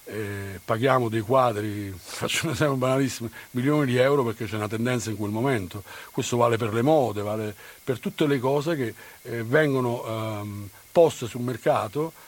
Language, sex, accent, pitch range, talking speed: Italian, male, native, 110-145 Hz, 170 wpm